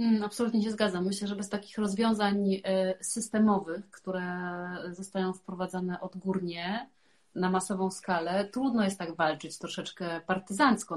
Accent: native